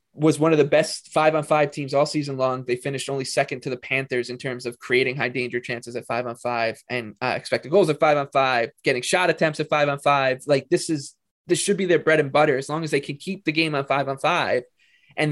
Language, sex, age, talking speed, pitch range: English, male, 20-39, 265 wpm, 130-160 Hz